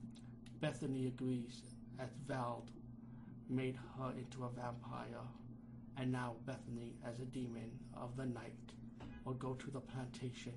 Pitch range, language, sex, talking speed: 120-125 Hz, English, male, 130 wpm